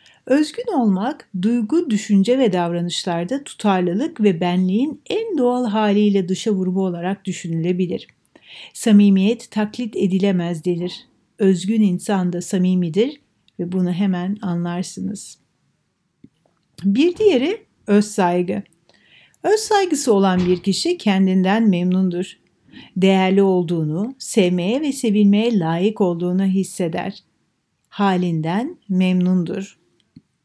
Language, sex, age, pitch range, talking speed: Turkish, female, 60-79, 180-235 Hz, 95 wpm